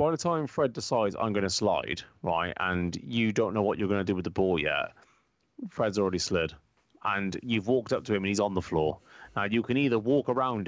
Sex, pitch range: male, 100-155 Hz